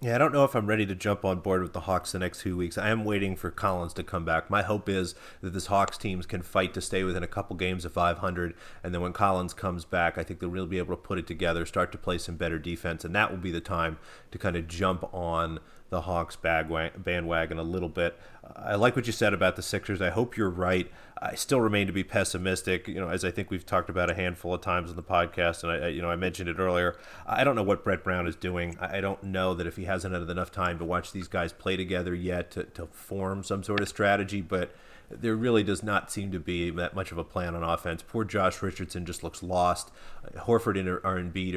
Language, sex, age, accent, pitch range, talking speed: English, male, 30-49, American, 85-95 Hz, 260 wpm